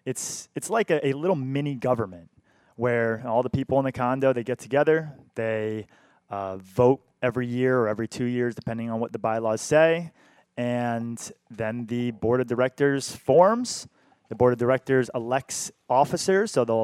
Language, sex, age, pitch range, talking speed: English, male, 30-49, 115-135 Hz, 170 wpm